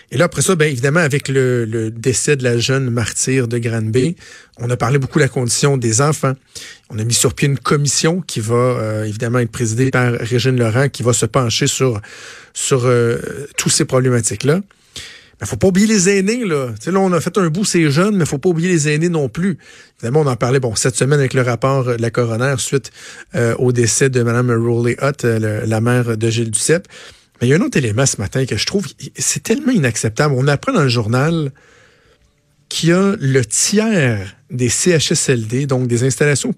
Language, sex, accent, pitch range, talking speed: French, male, Canadian, 120-155 Hz, 220 wpm